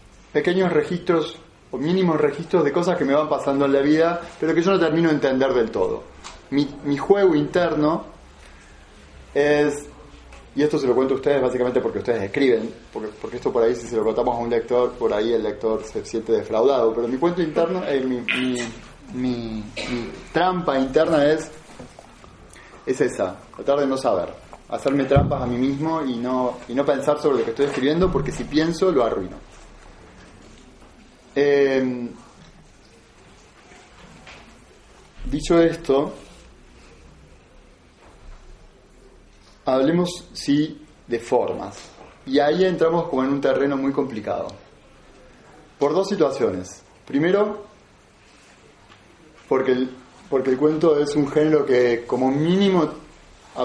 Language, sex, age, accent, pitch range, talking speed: Spanish, male, 20-39, Argentinian, 125-165 Hz, 140 wpm